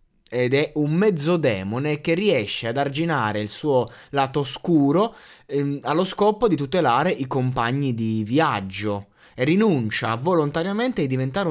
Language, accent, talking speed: Italian, native, 130 wpm